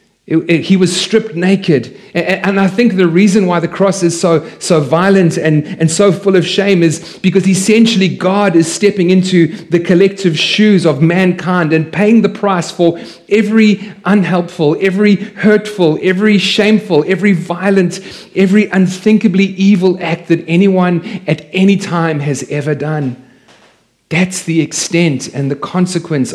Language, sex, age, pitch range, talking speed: English, male, 30-49, 150-195 Hz, 150 wpm